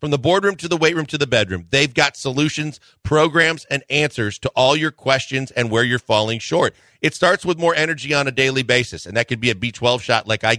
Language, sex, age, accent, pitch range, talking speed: English, male, 40-59, American, 115-145 Hz, 245 wpm